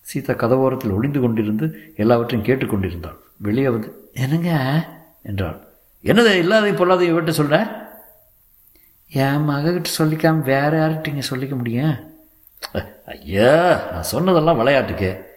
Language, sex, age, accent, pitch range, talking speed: Tamil, male, 60-79, native, 105-155 Hz, 80 wpm